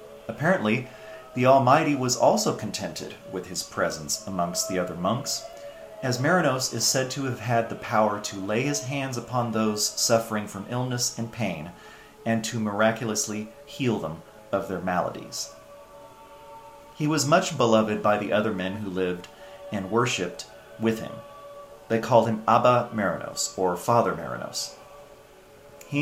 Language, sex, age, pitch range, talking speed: English, male, 40-59, 110-135 Hz, 150 wpm